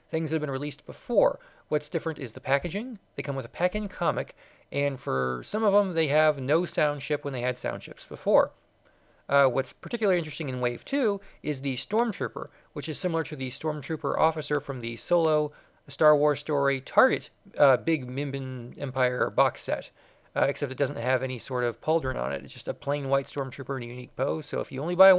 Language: English